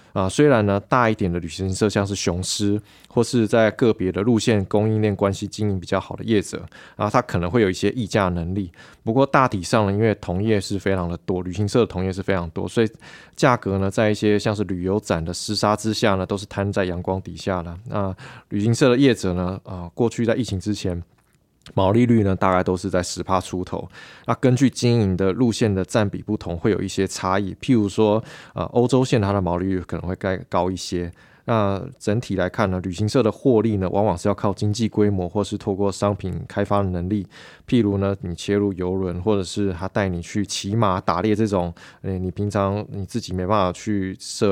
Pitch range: 95-110 Hz